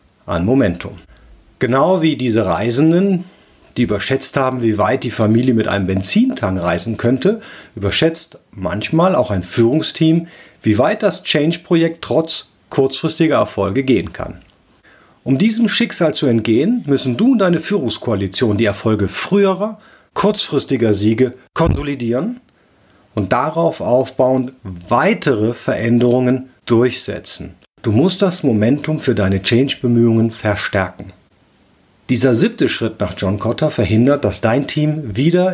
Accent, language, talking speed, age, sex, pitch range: German, German, 125 wpm, 50-69, male, 105-155 Hz